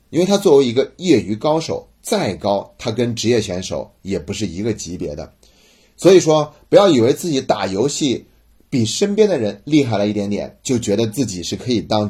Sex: male